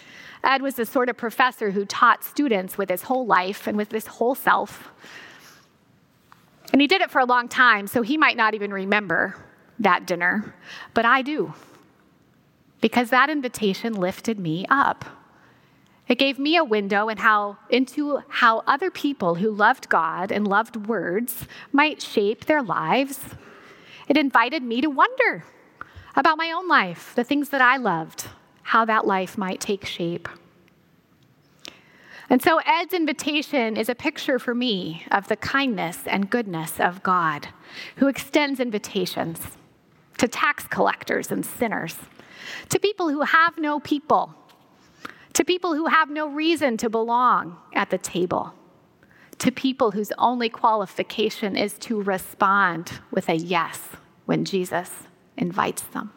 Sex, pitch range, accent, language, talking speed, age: female, 205-285 Hz, American, English, 145 wpm, 30-49